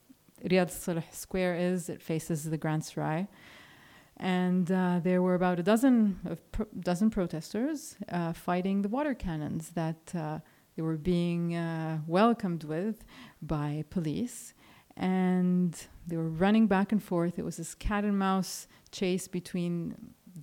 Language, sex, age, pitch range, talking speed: English, female, 30-49, 165-195 Hz, 150 wpm